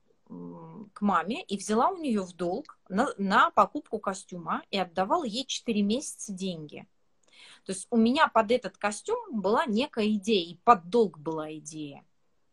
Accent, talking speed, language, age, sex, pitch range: native, 160 wpm, Russian, 30-49, female, 195-245 Hz